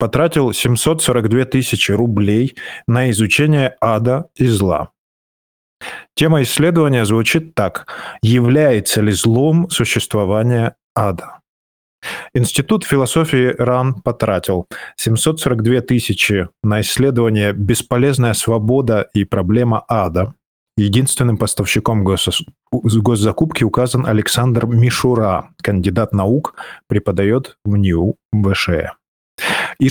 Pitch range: 105-130 Hz